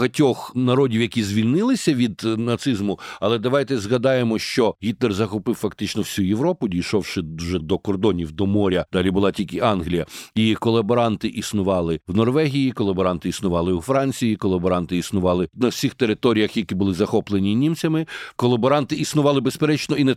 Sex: male